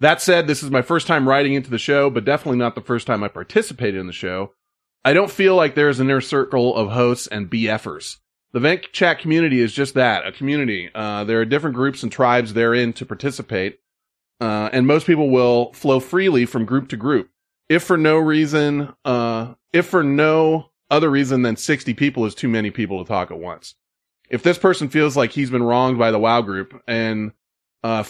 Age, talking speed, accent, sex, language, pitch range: 30-49, 210 wpm, American, male, English, 115-150 Hz